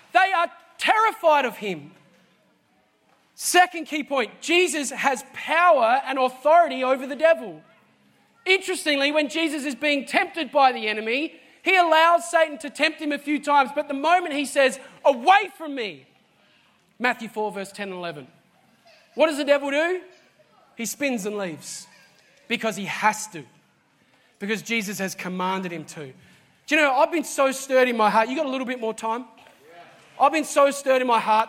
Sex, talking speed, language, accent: male, 175 wpm, English, Australian